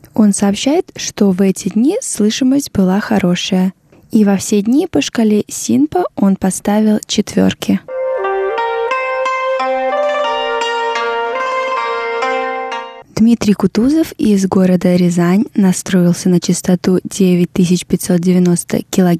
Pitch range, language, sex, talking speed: 180-230 Hz, Russian, female, 90 wpm